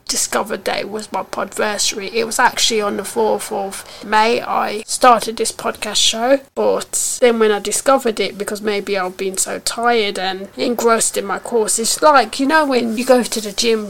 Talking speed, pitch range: 200 wpm, 205-240 Hz